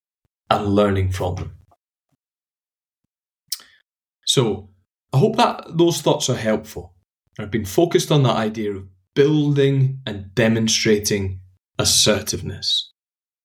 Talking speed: 105 wpm